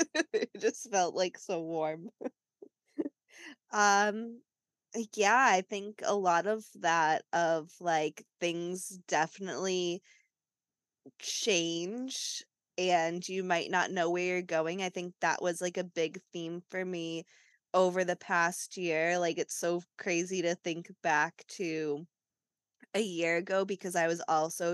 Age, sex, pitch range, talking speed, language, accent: 20-39, female, 170-195 Hz, 135 wpm, English, American